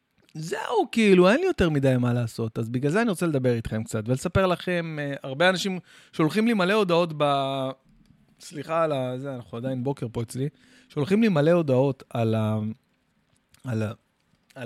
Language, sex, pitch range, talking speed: Hebrew, male, 115-150 Hz, 170 wpm